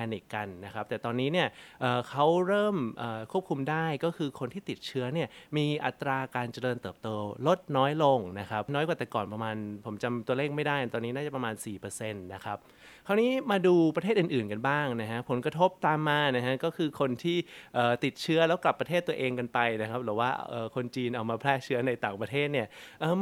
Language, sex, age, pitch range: Thai, male, 20-39, 120-160 Hz